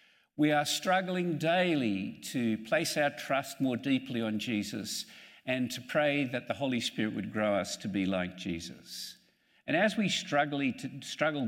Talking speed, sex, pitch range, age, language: 155 wpm, male, 110-155 Hz, 50-69, English